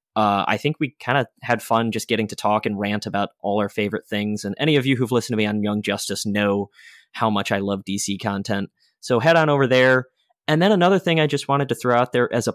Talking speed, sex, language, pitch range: 265 wpm, male, English, 110-135 Hz